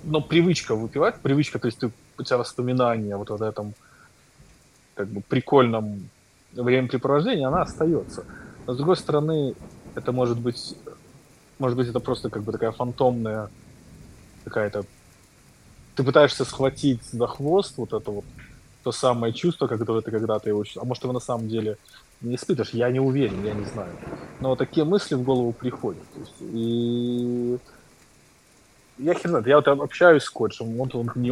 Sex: male